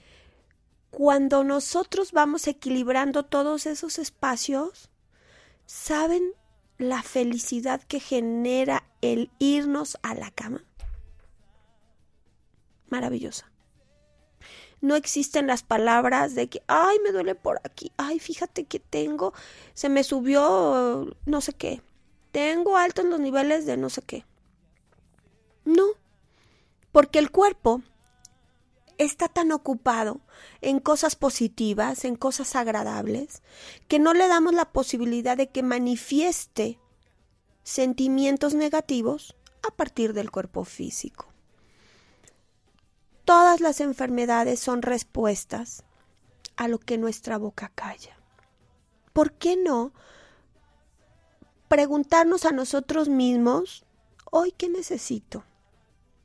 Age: 30-49